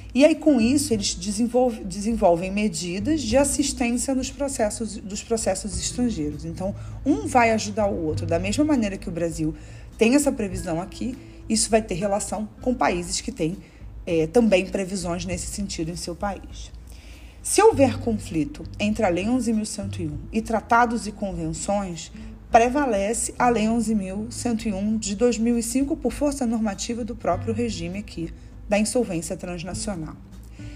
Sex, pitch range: female, 165-235 Hz